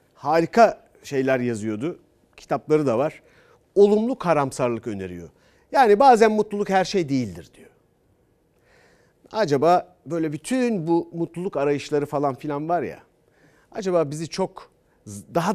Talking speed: 115 wpm